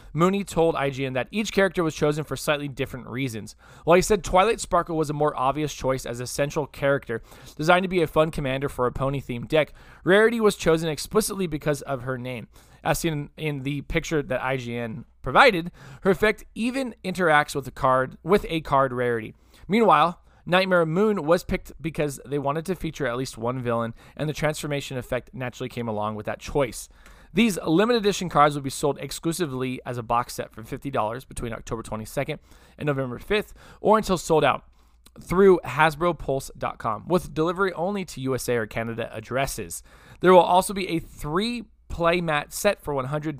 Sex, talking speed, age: male, 180 wpm, 20-39